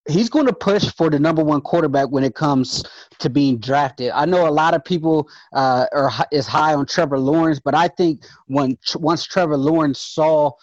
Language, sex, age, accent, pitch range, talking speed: English, male, 30-49, American, 130-160 Hz, 205 wpm